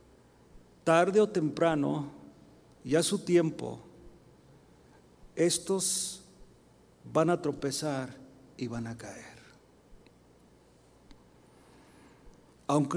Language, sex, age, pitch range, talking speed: Spanish, male, 40-59, 150-220 Hz, 75 wpm